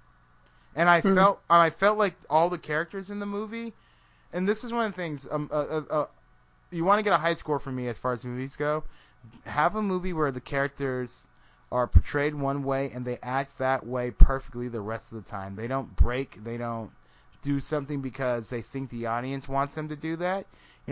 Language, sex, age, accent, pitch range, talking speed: English, male, 20-39, American, 120-150 Hz, 220 wpm